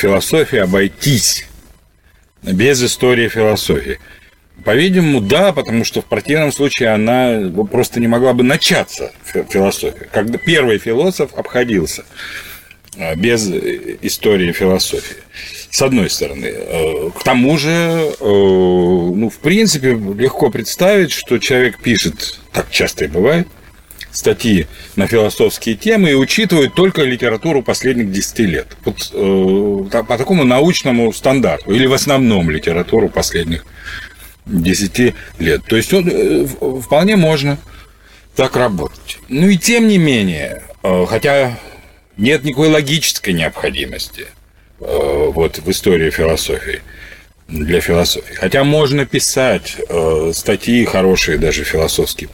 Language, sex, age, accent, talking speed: Russian, male, 40-59, native, 110 wpm